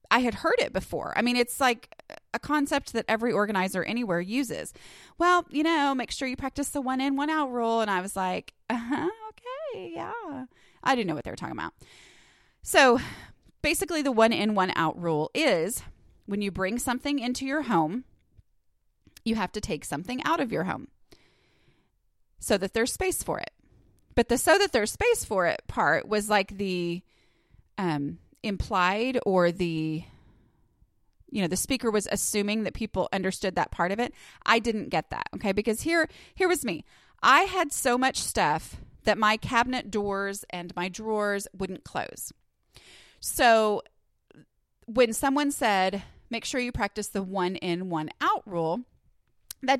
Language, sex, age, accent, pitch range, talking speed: English, female, 30-49, American, 195-270 Hz, 170 wpm